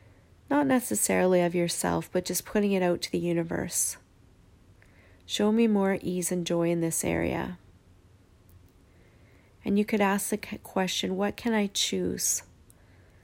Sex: female